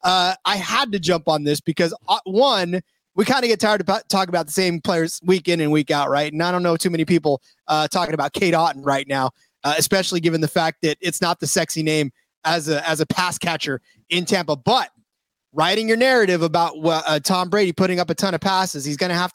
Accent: American